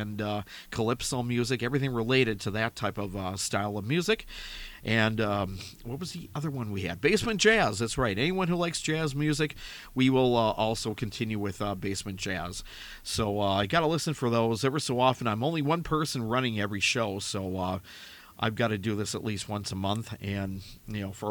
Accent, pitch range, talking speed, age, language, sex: American, 100-125 Hz, 210 wpm, 50-69, English, male